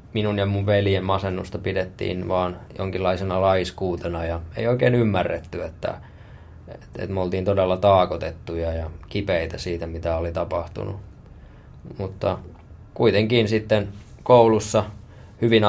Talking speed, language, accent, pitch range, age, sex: 115 wpm, Finnish, native, 90-105 Hz, 20-39, male